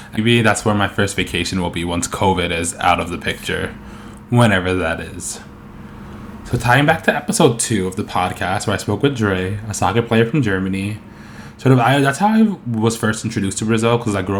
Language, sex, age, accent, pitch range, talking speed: English, male, 20-39, American, 100-115 Hz, 215 wpm